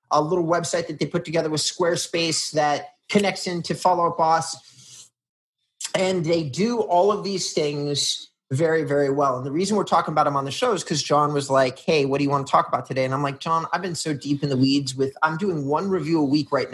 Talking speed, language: 240 wpm, English